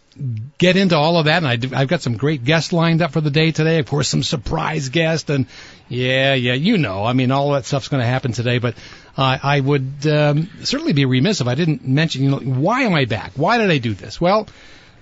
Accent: American